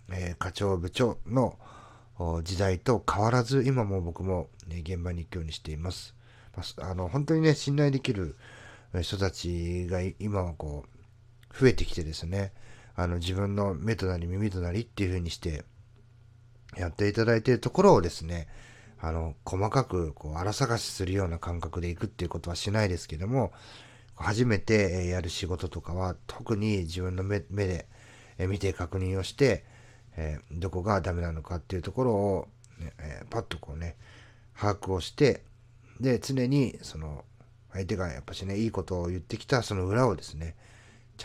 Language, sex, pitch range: Japanese, male, 90-120 Hz